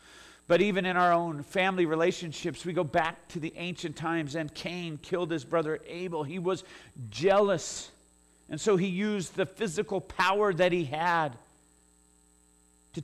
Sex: male